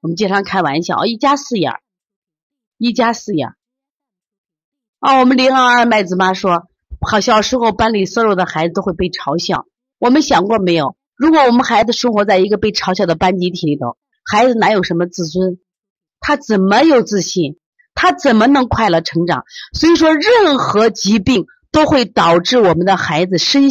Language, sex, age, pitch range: Chinese, female, 30-49, 170-245 Hz